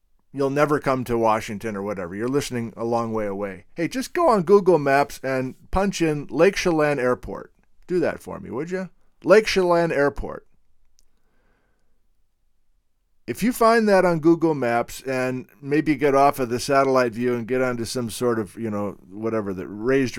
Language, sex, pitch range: English, male, 105-150 Hz